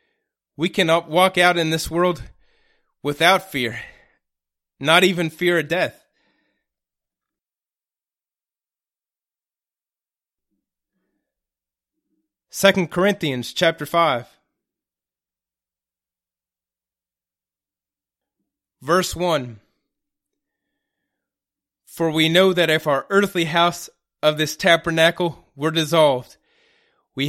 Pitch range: 135-175 Hz